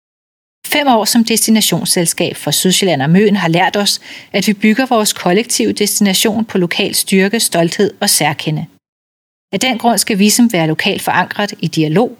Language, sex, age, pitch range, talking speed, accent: Danish, female, 30-49, 175-230 Hz, 160 wpm, native